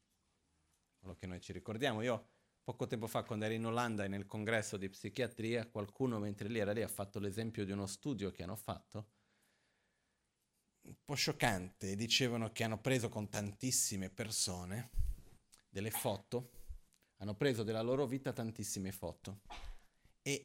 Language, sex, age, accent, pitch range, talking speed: Italian, male, 30-49, native, 105-135 Hz, 150 wpm